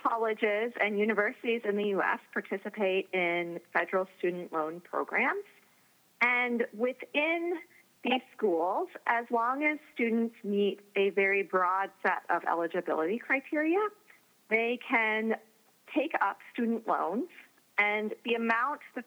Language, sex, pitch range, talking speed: English, female, 185-250 Hz, 120 wpm